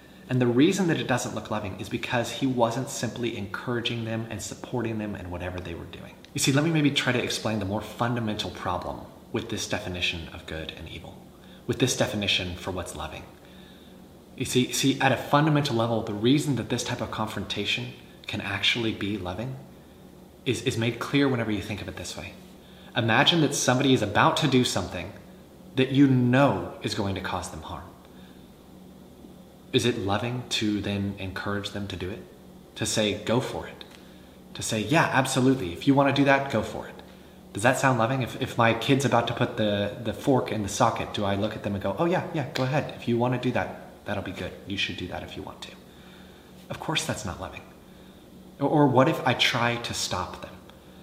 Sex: male